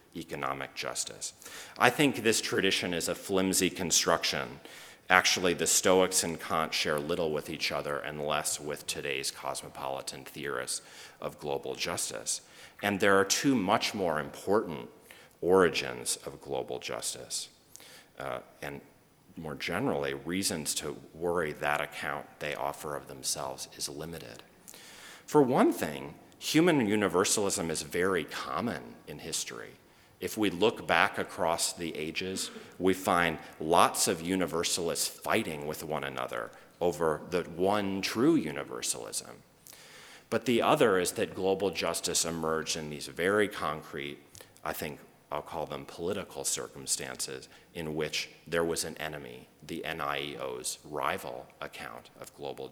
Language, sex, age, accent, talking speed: English, male, 40-59, American, 135 wpm